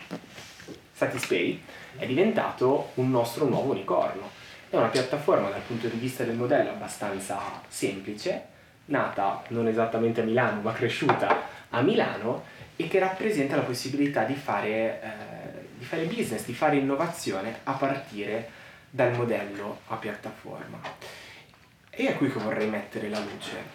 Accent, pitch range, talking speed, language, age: native, 110-140 Hz, 140 wpm, Italian, 20-39